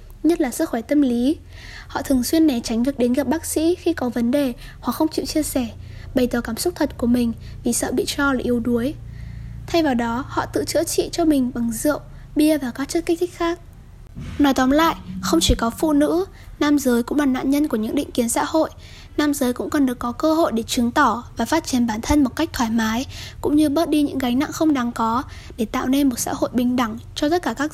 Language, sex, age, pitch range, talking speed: Vietnamese, female, 10-29, 245-310 Hz, 255 wpm